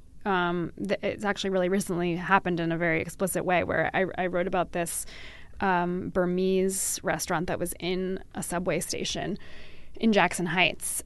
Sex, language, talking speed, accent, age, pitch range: female, English, 155 wpm, American, 20-39, 170-200 Hz